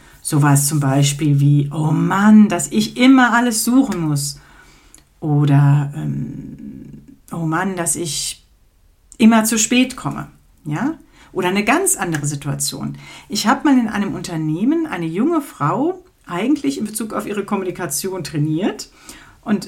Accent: German